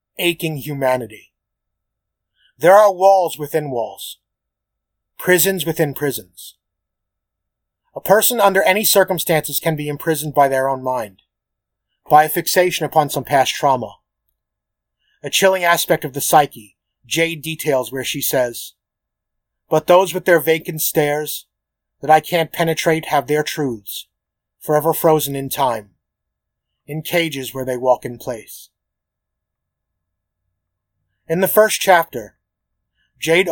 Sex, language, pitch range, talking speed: male, English, 105-160 Hz, 125 wpm